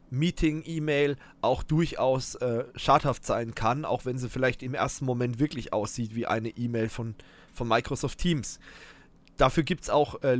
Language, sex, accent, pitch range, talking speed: German, male, German, 115-140 Hz, 165 wpm